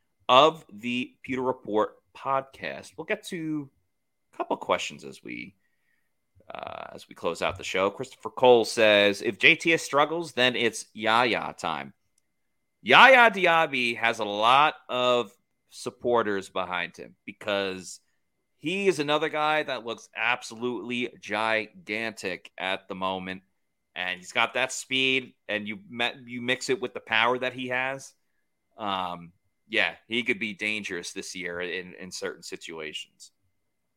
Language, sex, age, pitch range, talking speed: English, male, 30-49, 105-145 Hz, 140 wpm